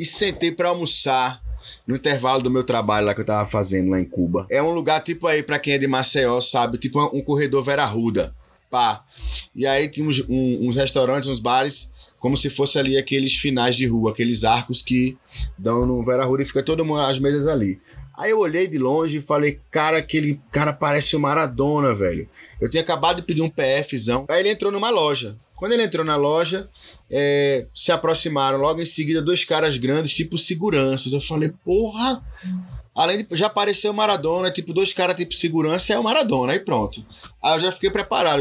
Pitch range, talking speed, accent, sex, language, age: 130-170 Hz, 205 wpm, Brazilian, male, Portuguese, 20-39